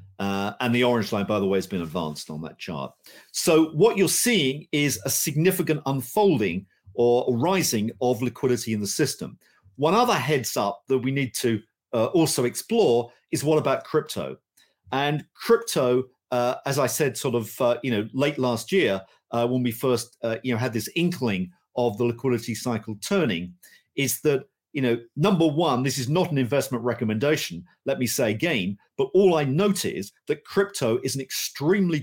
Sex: male